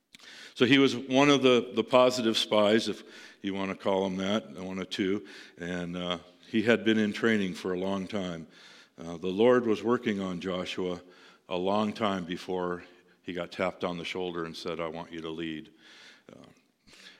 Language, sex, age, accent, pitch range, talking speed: English, male, 60-79, American, 90-115 Hz, 190 wpm